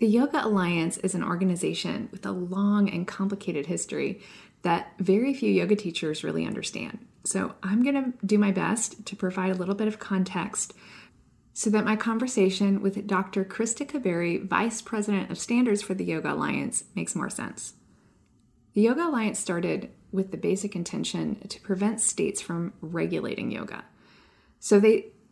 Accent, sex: American, female